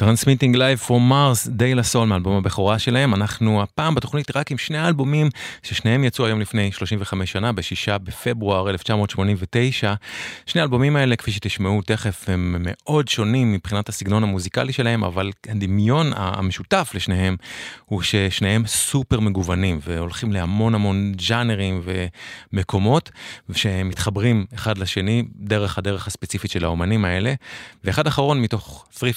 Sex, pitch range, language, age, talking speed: male, 95-125 Hz, English, 30-49, 115 wpm